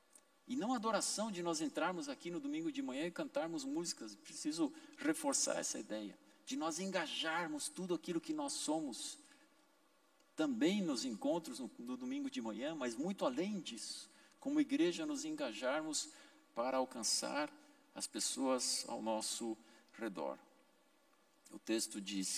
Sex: male